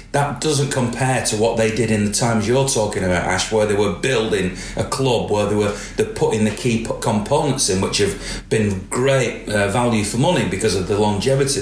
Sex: male